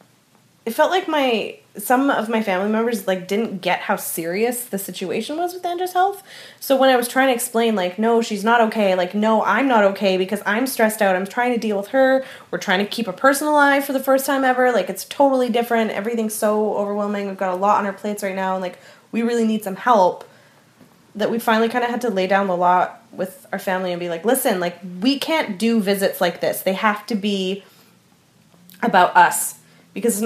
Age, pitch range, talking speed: 20-39, 190-240 Hz, 230 wpm